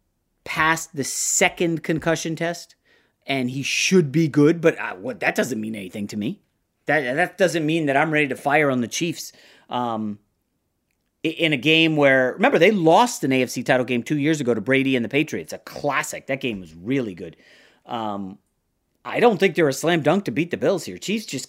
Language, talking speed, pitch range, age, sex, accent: English, 200 wpm, 125-175 Hz, 30-49, male, American